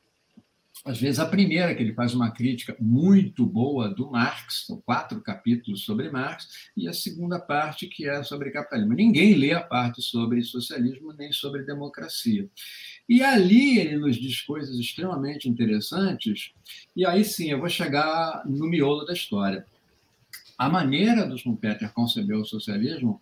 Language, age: Portuguese, 60-79